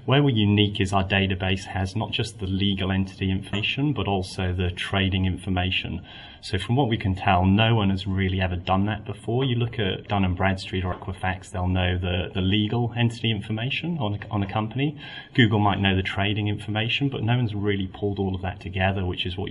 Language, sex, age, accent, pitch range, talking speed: English, male, 30-49, British, 95-105 Hz, 210 wpm